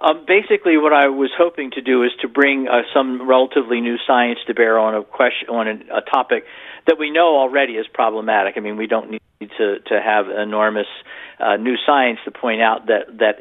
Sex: male